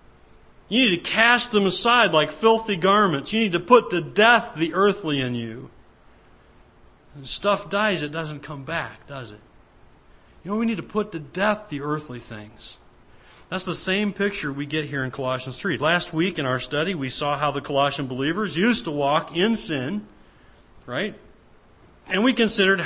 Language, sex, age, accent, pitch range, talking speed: English, male, 40-59, American, 150-210 Hz, 180 wpm